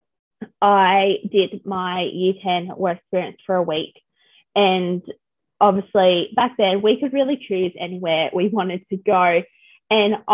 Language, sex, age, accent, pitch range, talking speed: English, female, 20-39, Australian, 180-210 Hz, 140 wpm